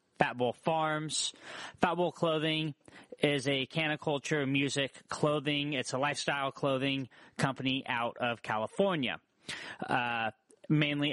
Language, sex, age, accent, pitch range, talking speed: English, male, 30-49, American, 125-145 Hz, 115 wpm